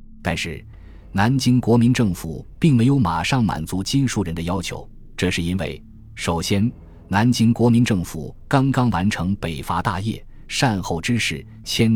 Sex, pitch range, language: male, 85-115 Hz, Chinese